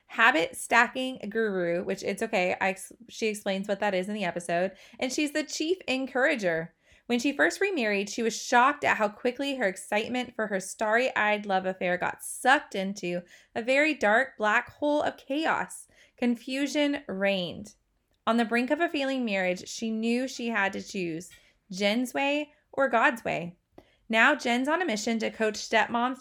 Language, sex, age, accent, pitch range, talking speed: English, female, 20-39, American, 205-270 Hz, 175 wpm